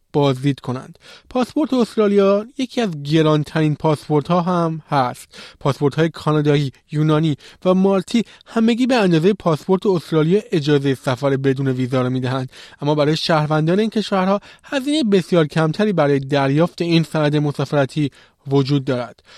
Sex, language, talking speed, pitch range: male, Persian, 140 wpm, 145-200 Hz